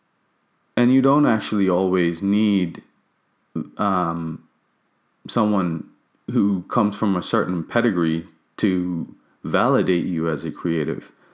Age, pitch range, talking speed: 30-49, 90-115 Hz, 105 wpm